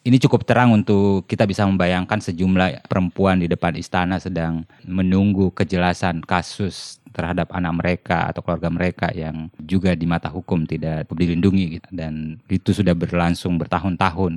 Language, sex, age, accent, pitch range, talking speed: Indonesian, male, 20-39, native, 90-105 Hz, 145 wpm